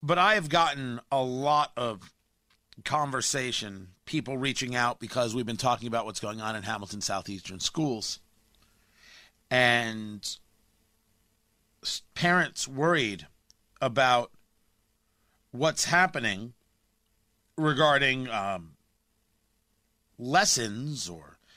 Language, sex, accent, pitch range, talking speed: English, male, American, 110-165 Hz, 90 wpm